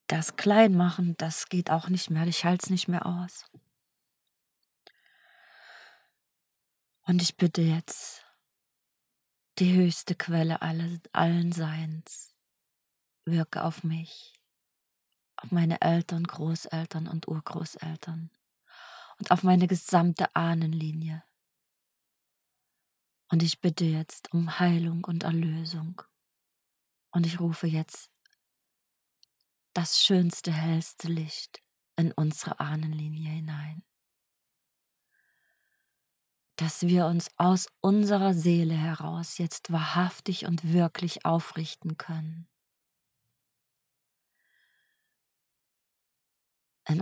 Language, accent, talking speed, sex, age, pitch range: German, German, 90 wpm, female, 30-49, 160-180 Hz